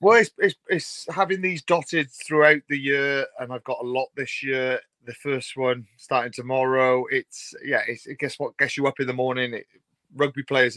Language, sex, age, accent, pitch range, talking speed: English, male, 30-49, British, 120-130 Hz, 205 wpm